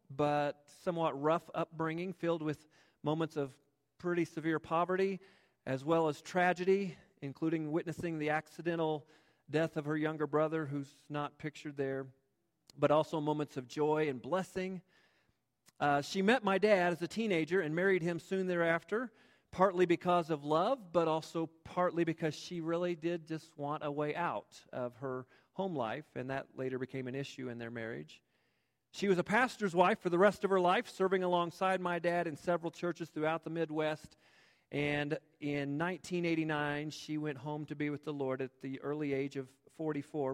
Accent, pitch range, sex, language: American, 140-175 Hz, male, English